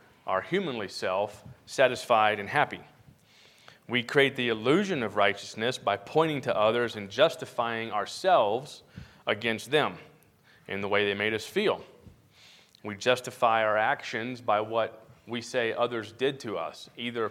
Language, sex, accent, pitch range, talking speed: English, male, American, 105-125 Hz, 140 wpm